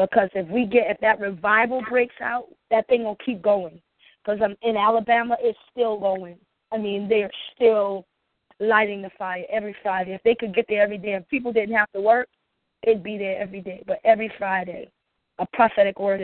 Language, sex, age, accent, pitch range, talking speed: English, female, 20-39, American, 185-220 Hz, 200 wpm